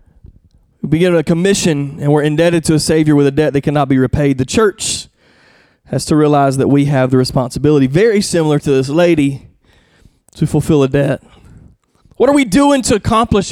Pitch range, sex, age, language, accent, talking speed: 145-235 Hz, male, 30-49, English, American, 185 wpm